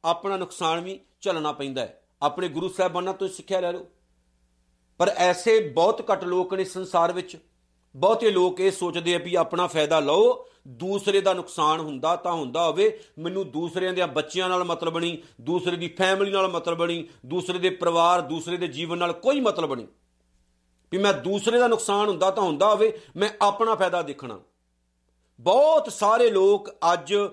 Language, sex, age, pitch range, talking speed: Punjabi, male, 50-69, 155-205 Hz, 170 wpm